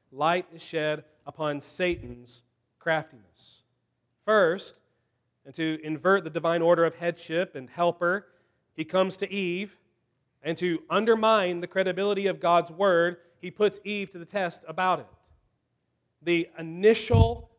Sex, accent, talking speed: male, American, 135 wpm